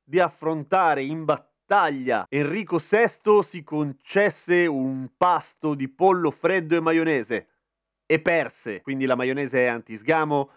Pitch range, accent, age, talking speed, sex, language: 140-185 Hz, native, 30-49, 125 wpm, male, Italian